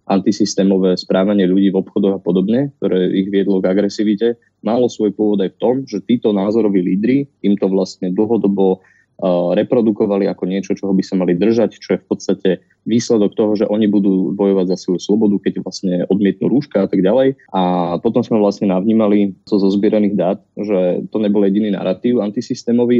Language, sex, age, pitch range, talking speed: Slovak, male, 20-39, 95-115 Hz, 185 wpm